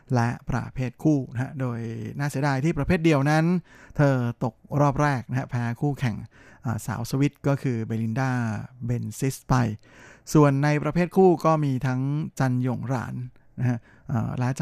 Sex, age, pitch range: male, 20-39, 120-145 Hz